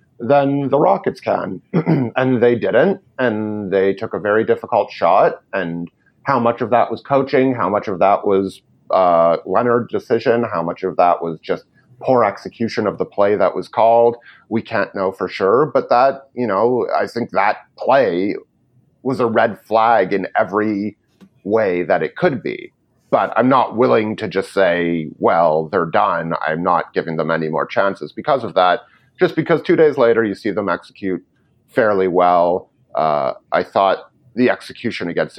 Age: 30-49